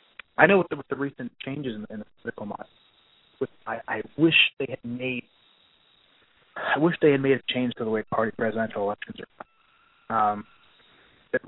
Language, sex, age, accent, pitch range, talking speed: English, male, 30-49, American, 120-145 Hz, 195 wpm